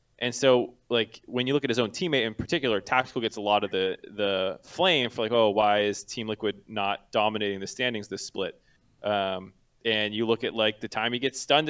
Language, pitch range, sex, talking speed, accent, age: English, 105-135 Hz, male, 225 wpm, American, 20-39